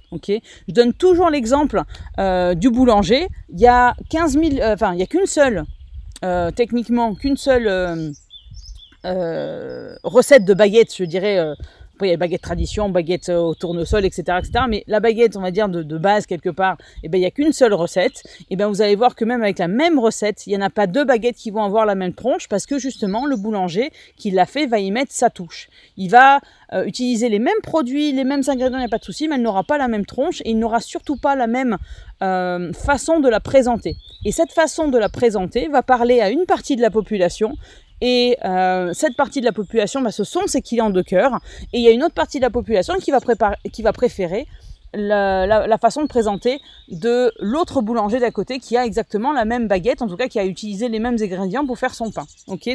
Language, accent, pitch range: French, French, 200-260 Hz